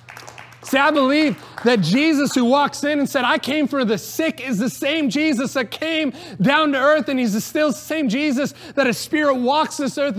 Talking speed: 220 wpm